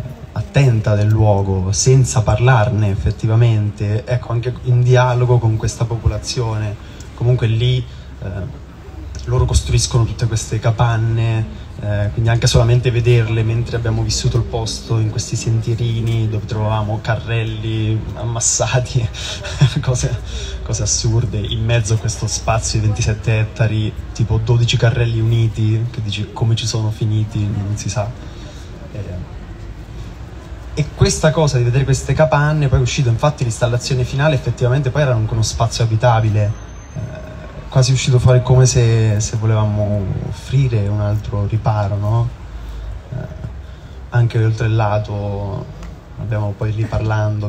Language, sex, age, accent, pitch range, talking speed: Italian, male, 20-39, native, 105-120 Hz, 130 wpm